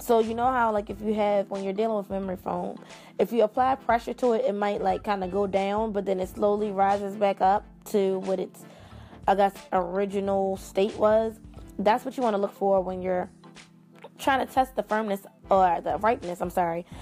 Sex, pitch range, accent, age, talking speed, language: female, 185-225 Hz, American, 20-39, 215 wpm, English